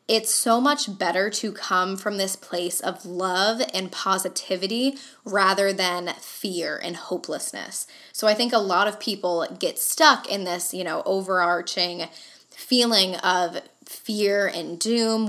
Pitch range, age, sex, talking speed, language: 180-215 Hz, 10-29, female, 145 wpm, English